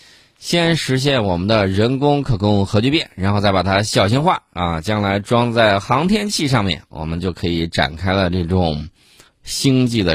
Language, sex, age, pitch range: Chinese, male, 20-39, 90-115 Hz